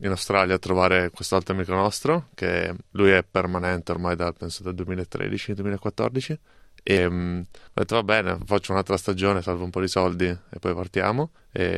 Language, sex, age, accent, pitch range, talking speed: Italian, male, 20-39, native, 90-100 Hz, 165 wpm